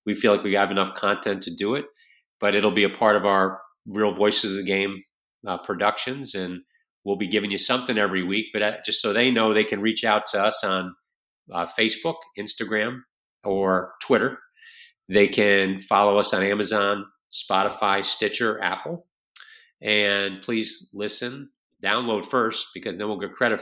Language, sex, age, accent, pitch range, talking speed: English, male, 40-59, American, 100-120 Hz, 175 wpm